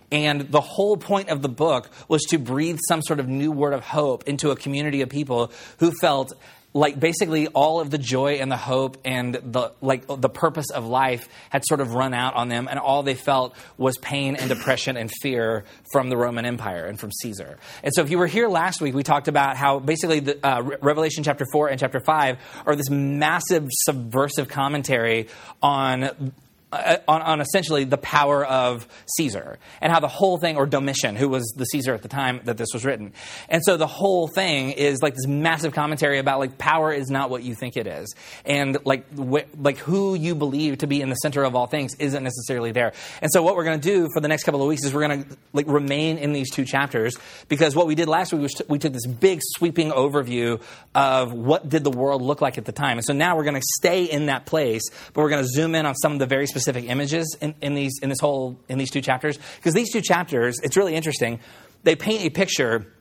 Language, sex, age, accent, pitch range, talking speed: English, male, 30-49, American, 130-155 Hz, 230 wpm